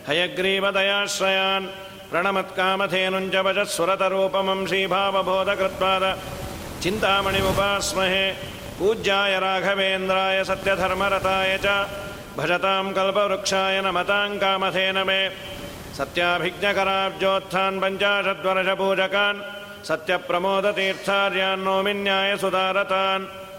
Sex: male